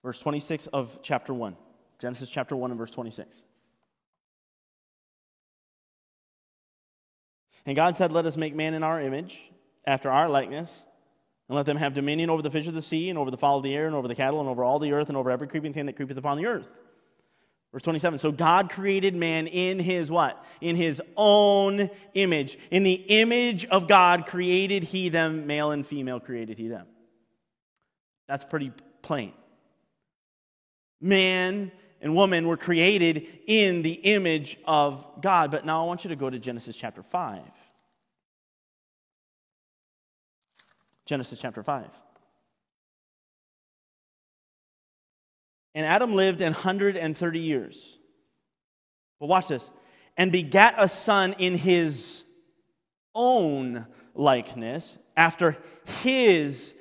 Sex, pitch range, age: male, 135-180 Hz, 30-49